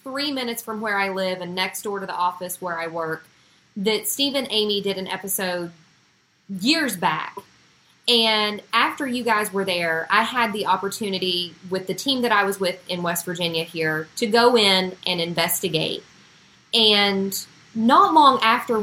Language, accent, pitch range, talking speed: English, American, 180-230 Hz, 170 wpm